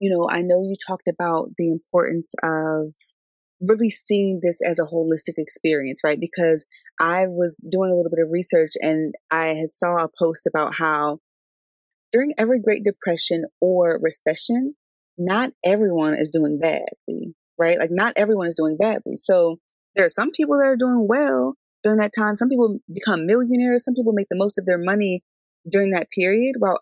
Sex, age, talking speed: female, 20-39, 180 wpm